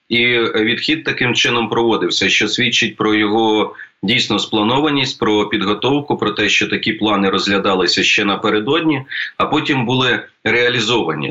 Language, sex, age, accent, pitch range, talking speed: Ukrainian, male, 30-49, native, 105-120 Hz, 135 wpm